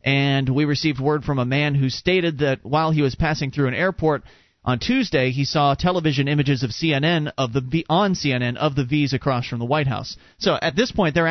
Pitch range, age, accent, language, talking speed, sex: 130-160 Hz, 30-49, American, English, 225 wpm, male